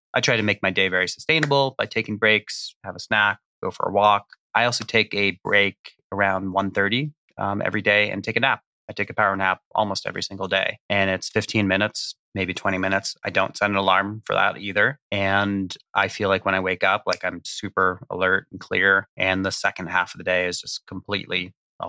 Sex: male